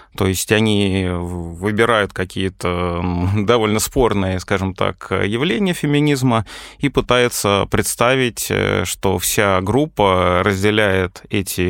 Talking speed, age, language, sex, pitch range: 95 wpm, 20-39, Russian, male, 100-120 Hz